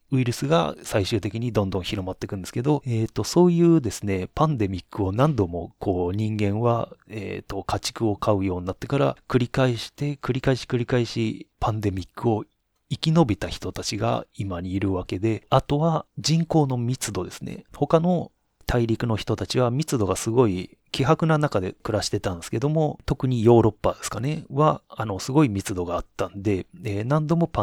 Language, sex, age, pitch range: Japanese, male, 30-49, 100-145 Hz